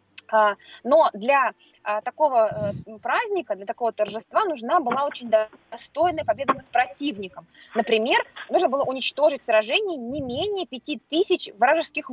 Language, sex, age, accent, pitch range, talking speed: Russian, female, 20-39, native, 225-310 Hz, 125 wpm